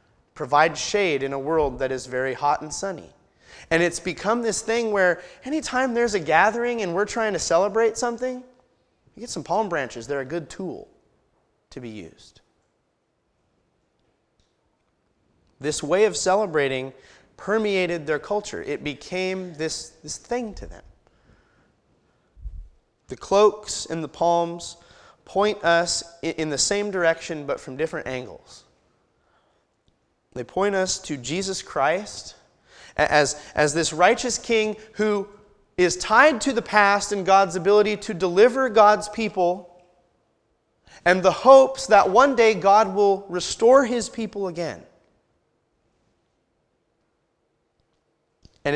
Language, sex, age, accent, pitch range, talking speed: English, male, 30-49, American, 155-215 Hz, 130 wpm